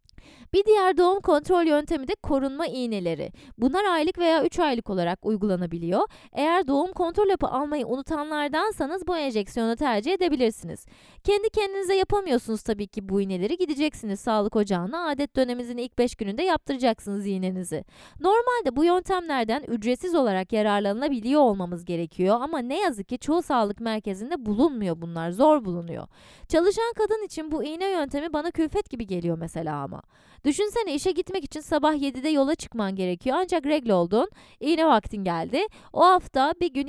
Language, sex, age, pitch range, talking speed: Turkish, female, 20-39, 215-340 Hz, 150 wpm